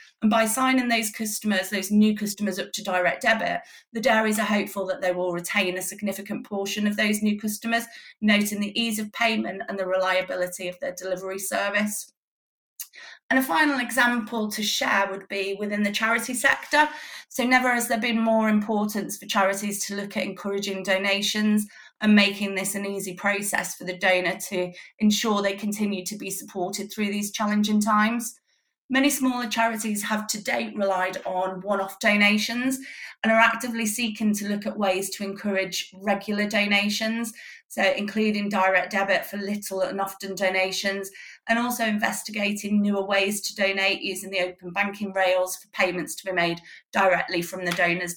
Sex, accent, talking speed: female, British, 170 wpm